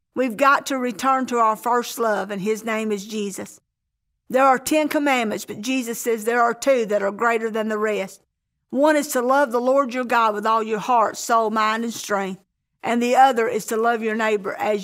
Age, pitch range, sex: 50-69, 210-260 Hz, female